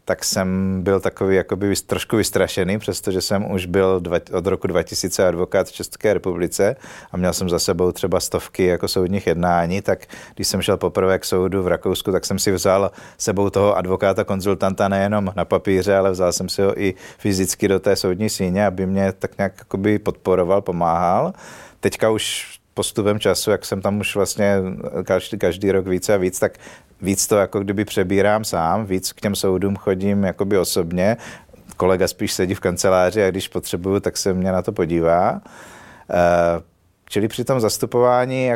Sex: male